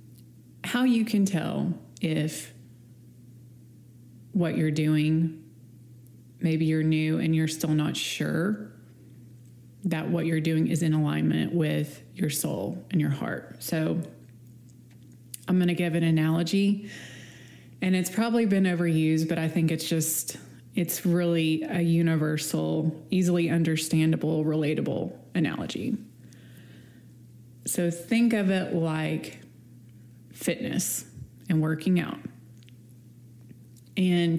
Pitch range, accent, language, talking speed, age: 120-180 Hz, American, English, 110 wpm, 20-39